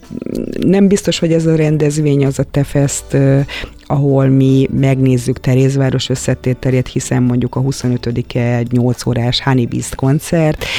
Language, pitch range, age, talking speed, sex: Hungarian, 125-150 Hz, 30-49, 135 wpm, female